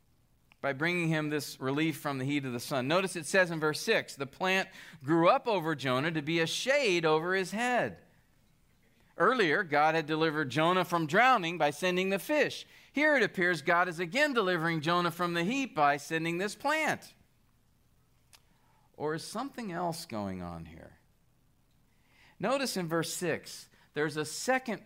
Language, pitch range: English, 150-205 Hz